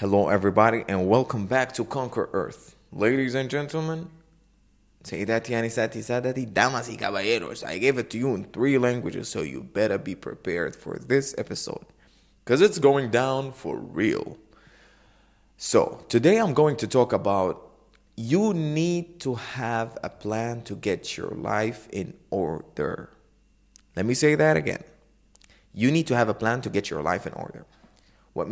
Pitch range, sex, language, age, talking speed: 110-135 Hz, male, English, 20-39, 160 wpm